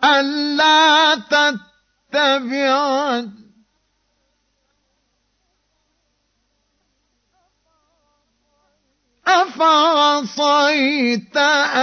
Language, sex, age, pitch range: Arabic, male, 50-69, 215-285 Hz